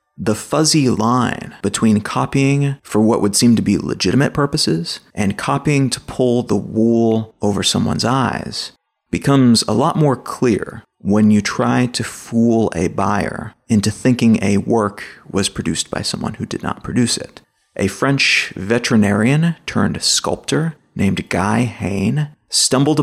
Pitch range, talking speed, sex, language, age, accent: 105-135 Hz, 145 wpm, male, English, 30-49, American